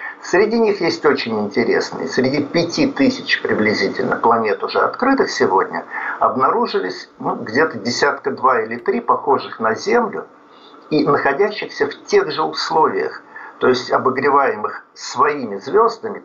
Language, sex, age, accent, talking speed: Russian, male, 50-69, native, 120 wpm